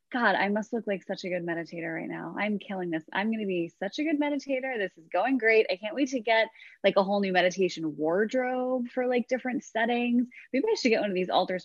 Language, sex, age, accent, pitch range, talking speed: English, female, 20-39, American, 180-245 Hz, 250 wpm